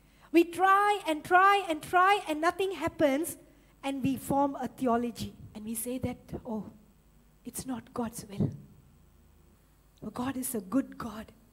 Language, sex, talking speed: English, female, 145 wpm